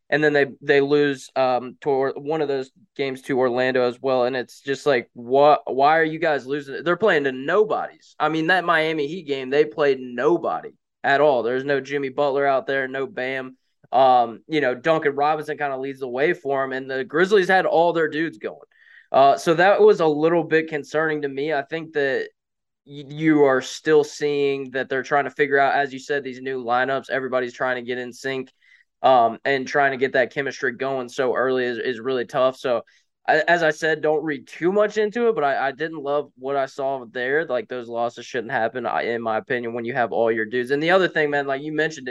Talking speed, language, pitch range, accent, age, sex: 225 wpm, English, 130-155 Hz, American, 20-39, male